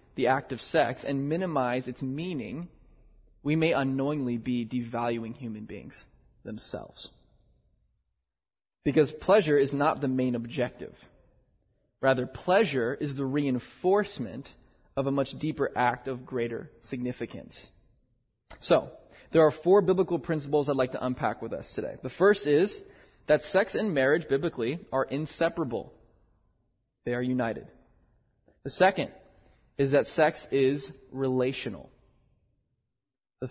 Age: 20-39